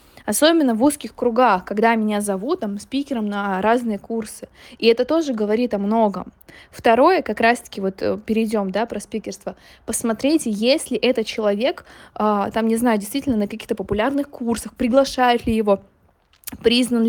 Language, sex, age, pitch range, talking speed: Russian, female, 20-39, 215-260 Hz, 155 wpm